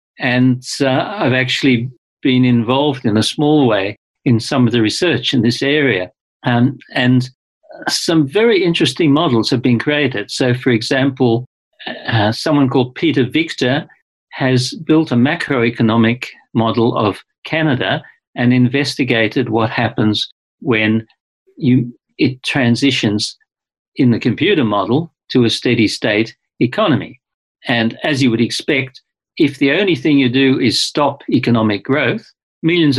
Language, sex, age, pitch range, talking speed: English, male, 50-69, 115-145 Hz, 135 wpm